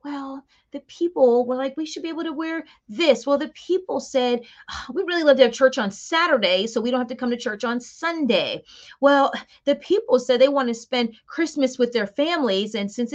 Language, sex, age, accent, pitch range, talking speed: English, female, 30-49, American, 225-295 Hz, 225 wpm